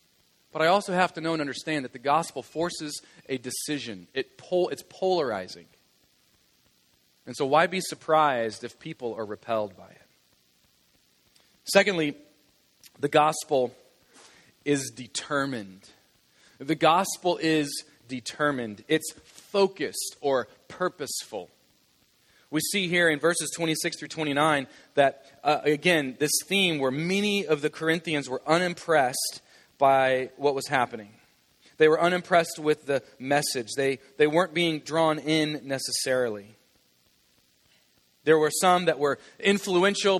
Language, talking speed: English, 125 wpm